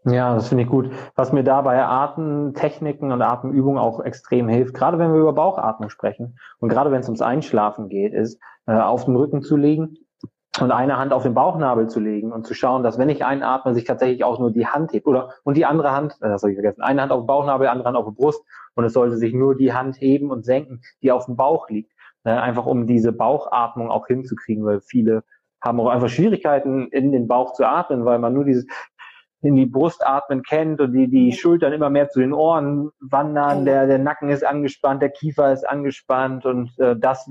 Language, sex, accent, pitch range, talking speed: German, male, German, 120-140 Hz, 225 wpm